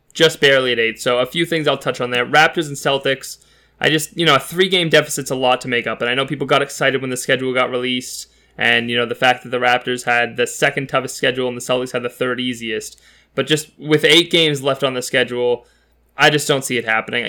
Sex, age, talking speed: male, 20-39, 255 wpm